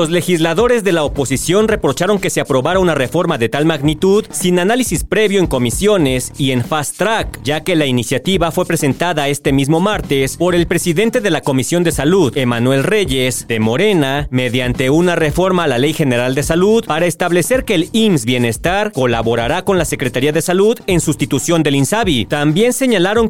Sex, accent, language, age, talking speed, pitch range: male, Mexican, Spanish, 40-59, 185 wpm, 135-190 Hz